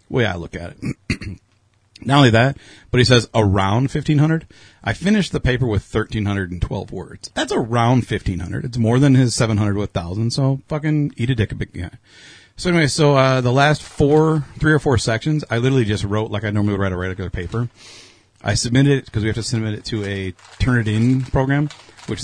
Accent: American